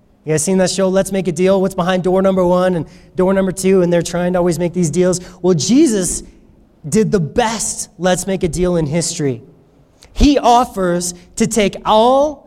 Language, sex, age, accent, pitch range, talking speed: English, male, 30-49, American, 175-230 Hz, 200 wpm